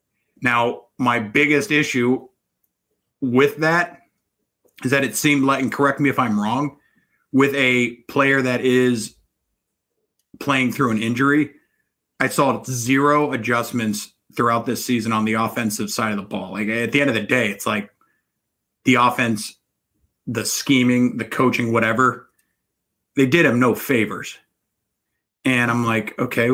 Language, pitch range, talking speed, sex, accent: English, 115-135 Hz, 145 wpm, male, American